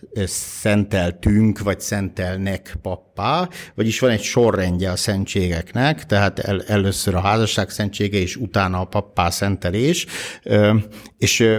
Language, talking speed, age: Hungarian, 115 wpm, 60-79